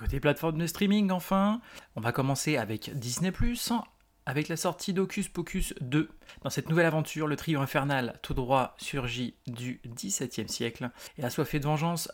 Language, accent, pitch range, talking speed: French, French, 135-185 Hz, 170 wpm